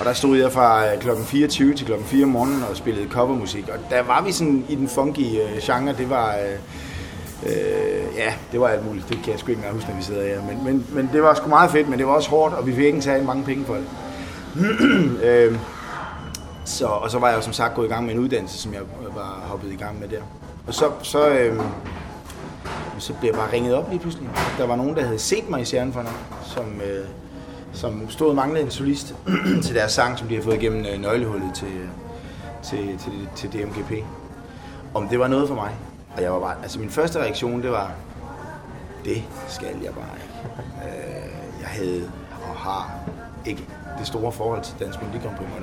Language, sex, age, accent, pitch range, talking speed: Danish, male, 30-49, native, 95-130 Hz, 220 wpm